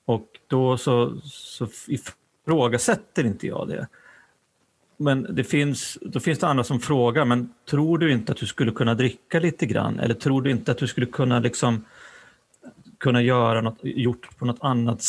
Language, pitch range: Swedish, 120-165 Hz